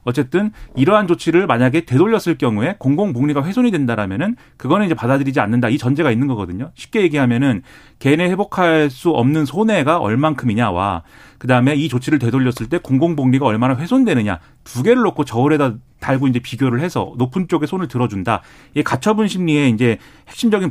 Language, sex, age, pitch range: Korean, male, 40-59, 120-175 Hz